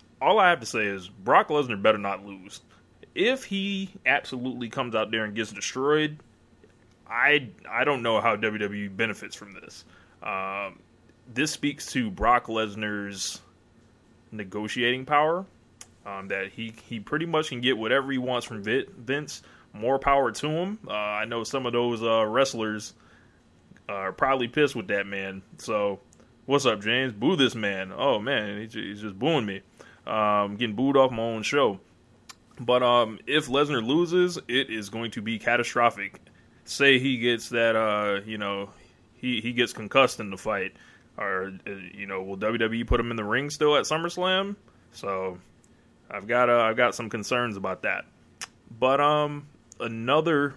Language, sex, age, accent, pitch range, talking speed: English, male, 20-39, American, 105-130 Hz, 165 wpm